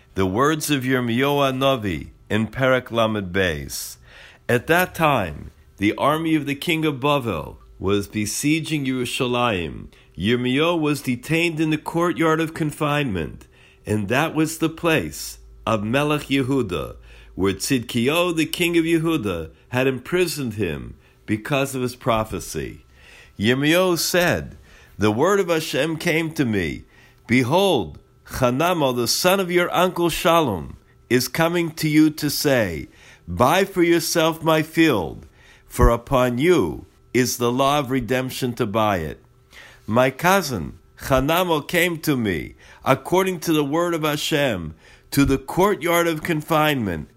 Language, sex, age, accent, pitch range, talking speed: English, male, 60-79, American, 115-160 Hz, 135 wpm